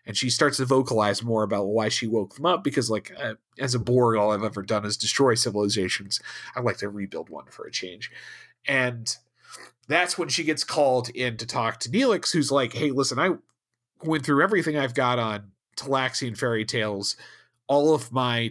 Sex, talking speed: male, 200 wpm